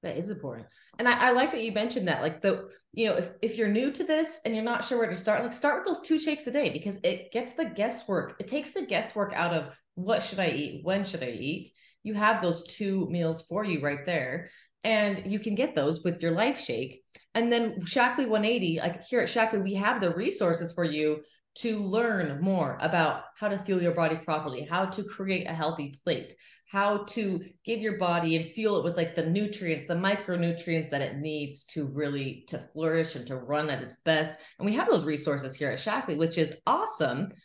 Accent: American